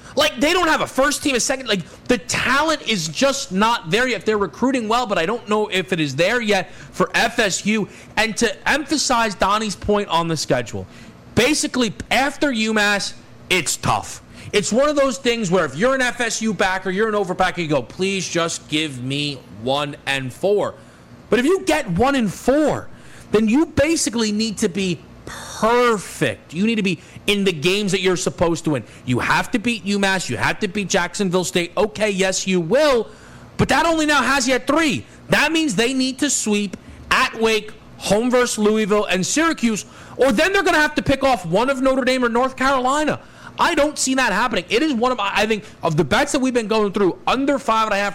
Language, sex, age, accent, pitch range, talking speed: English, male, 30-49, American, 160-240 Hz, 205 wpm